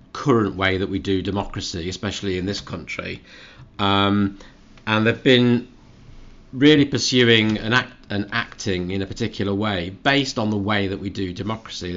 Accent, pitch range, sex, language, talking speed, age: British, 95-115 Hz, male, English, 150 wpm, 40-59